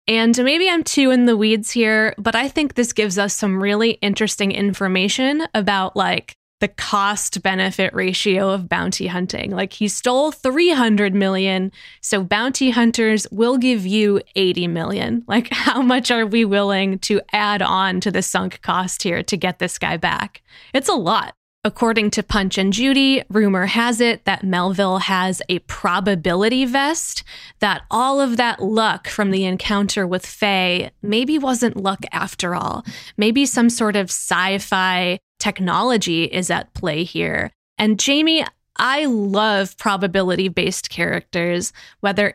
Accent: American